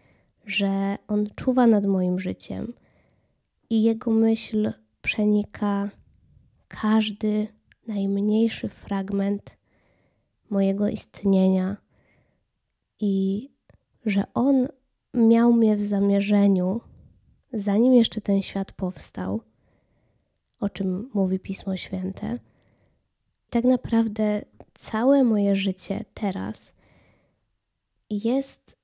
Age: 20-39